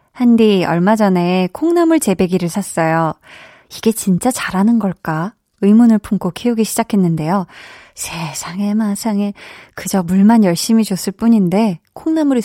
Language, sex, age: Korean, female, 20-39